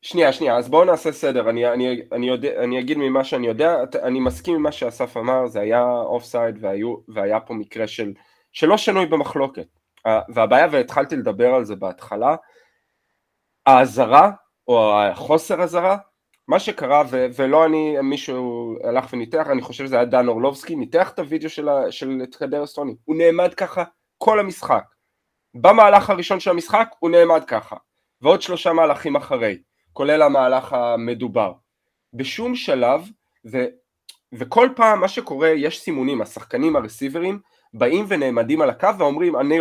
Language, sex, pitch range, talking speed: Hebrew, male, 130-210 Hz, 150 wpm